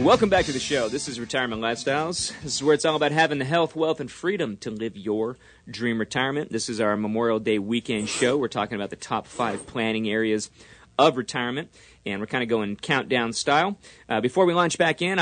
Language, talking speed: English, 220 wpm